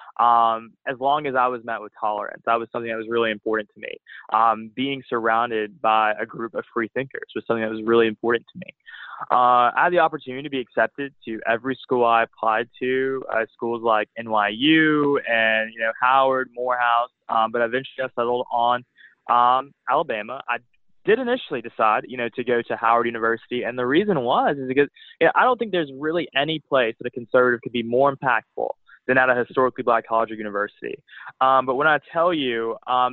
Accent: American